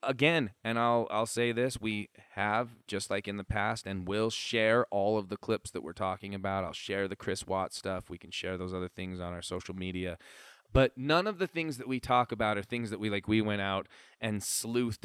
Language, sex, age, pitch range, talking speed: English, male, 20-39, 95-120 Hz, 235 wpm